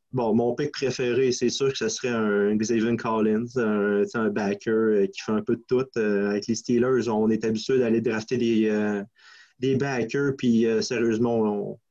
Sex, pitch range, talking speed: male, 110-125 Hz, 190 wpm